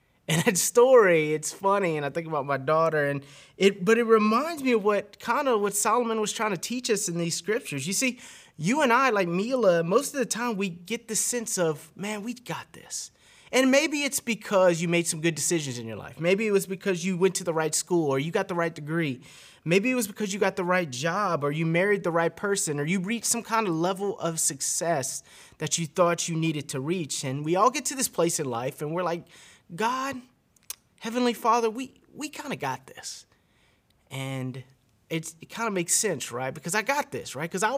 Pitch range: 150-215 Hz